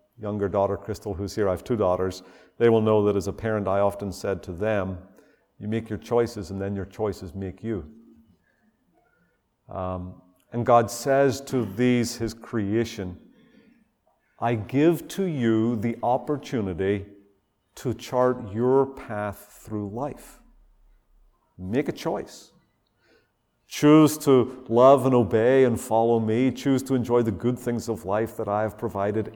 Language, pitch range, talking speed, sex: English, 100-130 Hz, 150 wpm, male